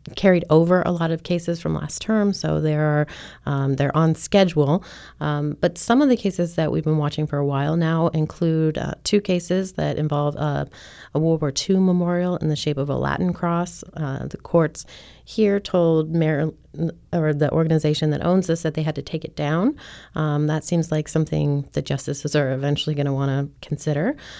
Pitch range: 150-175 Hz